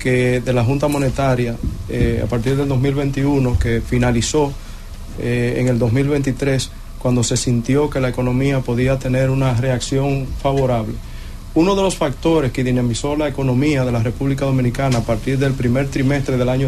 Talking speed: 160 wpm